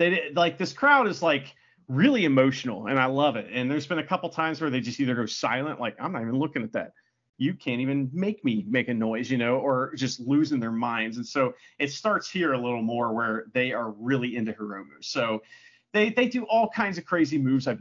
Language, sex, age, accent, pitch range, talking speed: English, male, 40-59, American, 130-190 Hz, 240 wpm